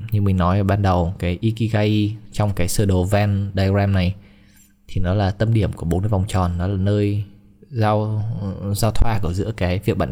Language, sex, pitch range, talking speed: Vietnamese, male, 95-105 Hz, 215 wpm